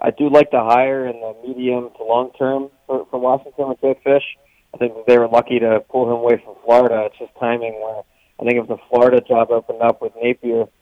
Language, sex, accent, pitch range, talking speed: English, male, American, 115-130 Hz, 225 wpm